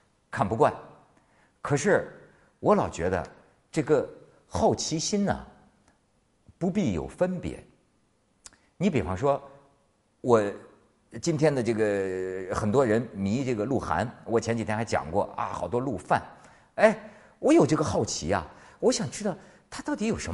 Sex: male